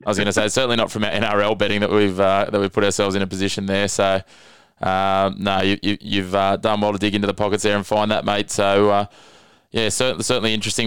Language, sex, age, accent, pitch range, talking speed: English, male, 20-39, Australian, 95-105 Hz, 255 wpm